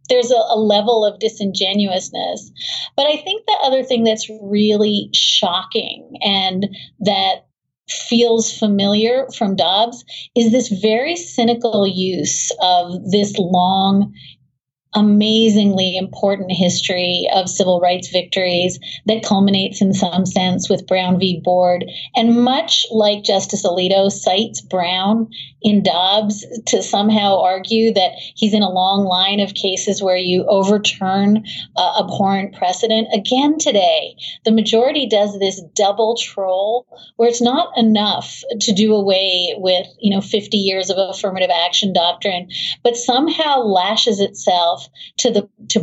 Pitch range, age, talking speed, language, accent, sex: 185-225 Hz, 30-49, 130 wpm, English, American, female